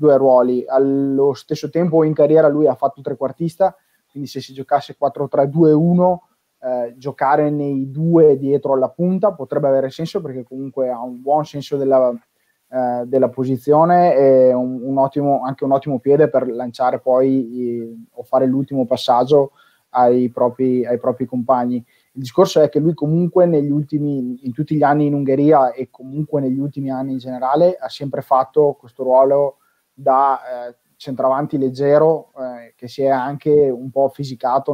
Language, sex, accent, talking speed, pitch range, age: Italian, male, native, 165 wpm, 130-150 Hz, 20-39